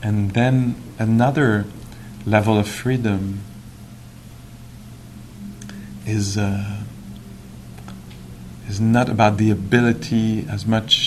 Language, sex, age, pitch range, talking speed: English, male, 40-59, 100-120 Hz, 80 wpm